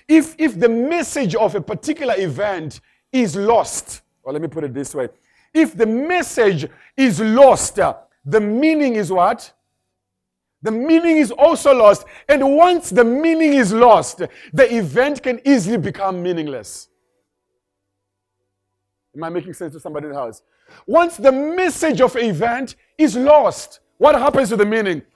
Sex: male